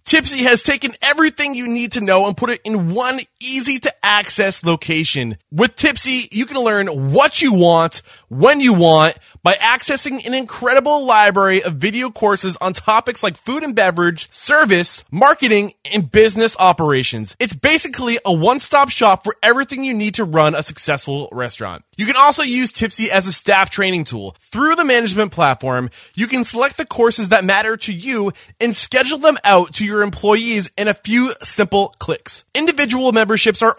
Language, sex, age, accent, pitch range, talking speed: English, male, 20-39, American, 180-255 Hz, 180 wpm